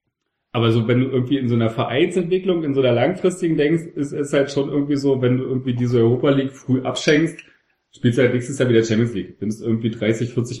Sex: male